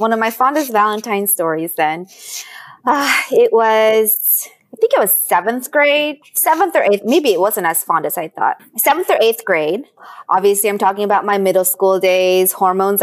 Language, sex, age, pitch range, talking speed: English, female, 20-39, 185-300 Hz, 185 wpm